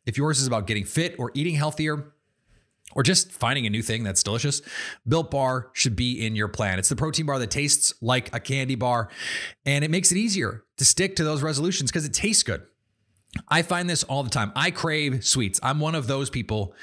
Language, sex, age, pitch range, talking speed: English, male, 30-49, 115-145 Hz, 220 wpm